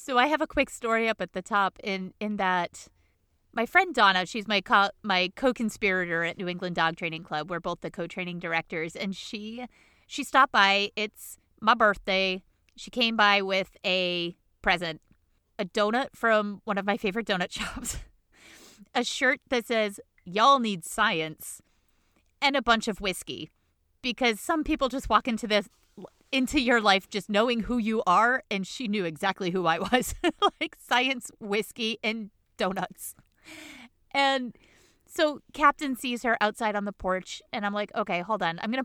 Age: 30-49